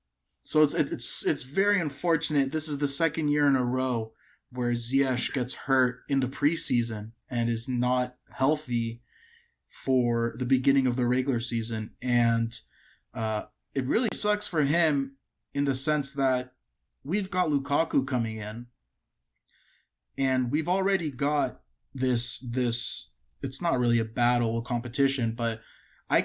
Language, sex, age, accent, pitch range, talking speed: English, male, 30-49, American, 120-140 Hz, 145 wpm